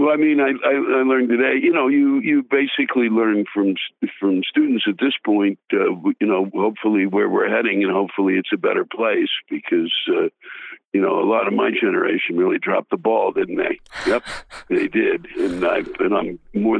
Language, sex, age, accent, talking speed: English, male, 60-79, American, 200 wpm